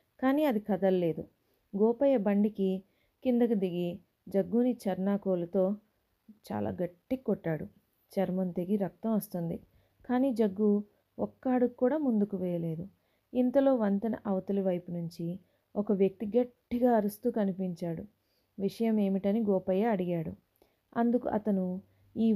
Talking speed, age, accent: 105 wpm, 30-49, native